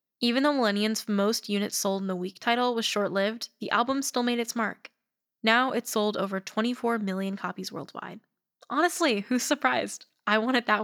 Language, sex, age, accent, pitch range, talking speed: English, female, 10-29, American, 195-235 Hz, 185 wpm